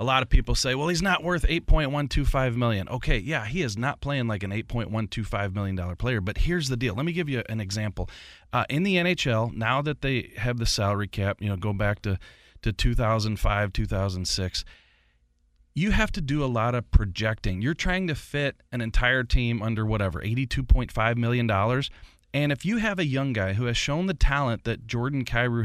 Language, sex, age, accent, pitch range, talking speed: English, male, 30-49, American, 110-145 Hz, 200 wpm